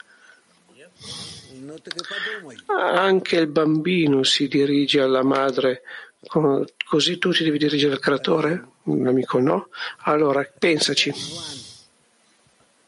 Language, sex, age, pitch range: Italian, male, 50-69, 140-170 Hz